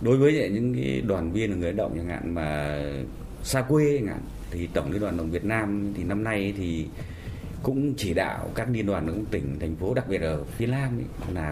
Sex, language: male, Vietnamese